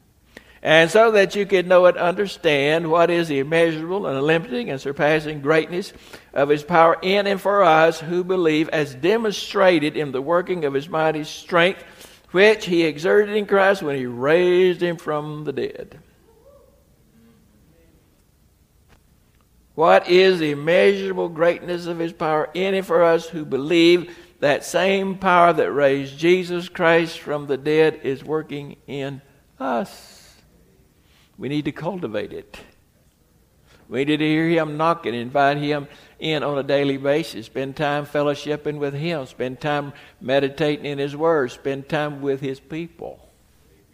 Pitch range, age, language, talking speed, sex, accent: 140-170 Hz, 60-79, English, 150 wpm, male, American